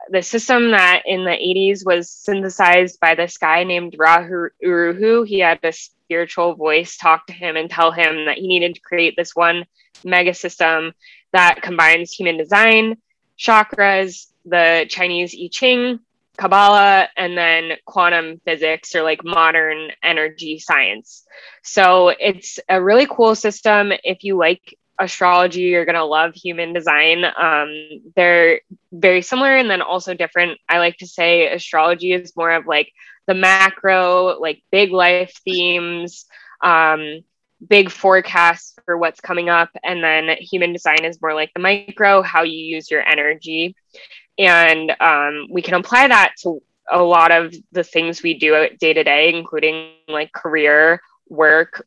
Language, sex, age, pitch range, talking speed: English, female, 20-39, 160-185 Hz, 155 wpm